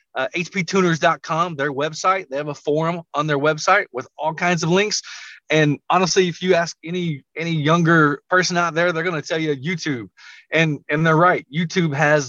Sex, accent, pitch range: male, American, 145-175 Hz